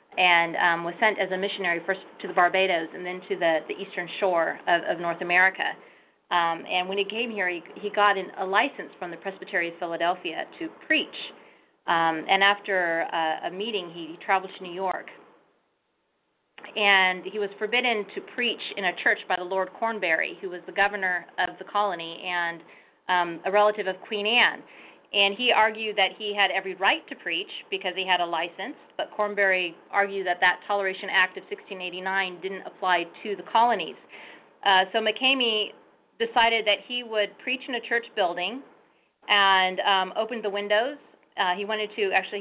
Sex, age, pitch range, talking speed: female, 30-49, 180-210 Hz, 185 wpm